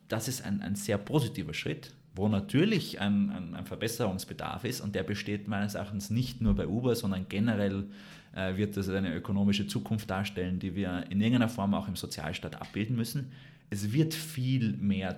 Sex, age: male, 30-49